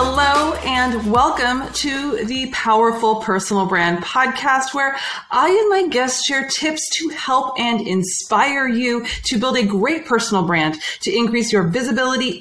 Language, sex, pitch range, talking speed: English, female, 200-260 Hz, 150 wpm